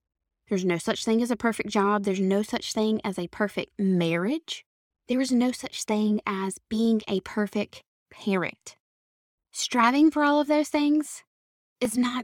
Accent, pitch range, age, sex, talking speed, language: American, 205-250 Hz, 10-29, female, 165 wpm, English